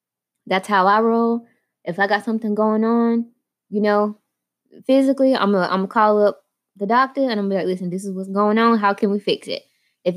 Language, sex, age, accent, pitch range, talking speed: English, female, 20-39, American, 170-210 Hz, 210 wpm